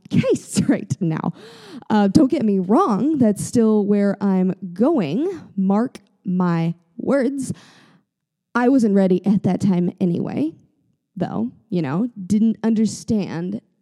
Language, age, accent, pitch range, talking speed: English, 20-39, American, 175-215 Hz, 120 wpm